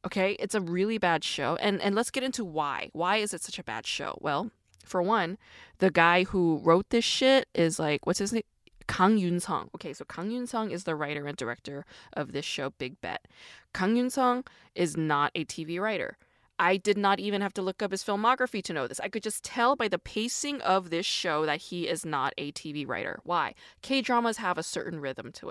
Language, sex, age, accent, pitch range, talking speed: English, female, 20-39, American, 175-230 Hz, 230 wpm